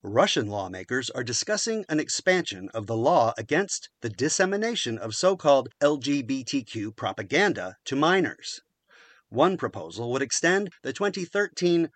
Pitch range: 120-190 Hz